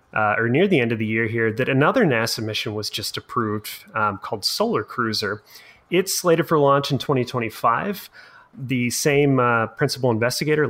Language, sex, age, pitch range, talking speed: English, male, 30-49, 115-145 Hz, 175 wpm